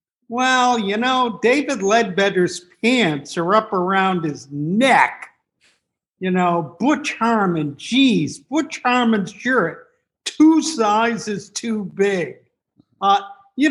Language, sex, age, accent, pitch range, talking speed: English, male, 50-69, American, 185-245 Hz, 110 wpm